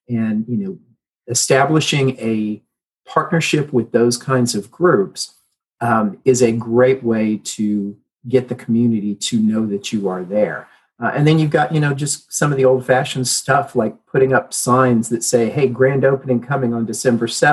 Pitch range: 115-135 Hz